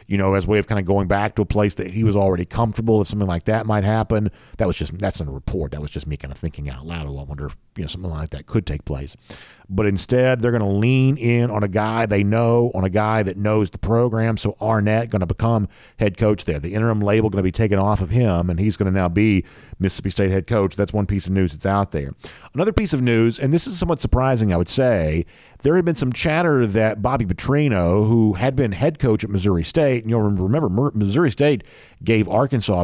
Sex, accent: male, American